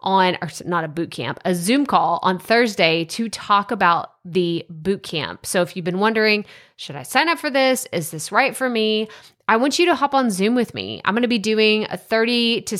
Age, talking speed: 20-39, 225 wpm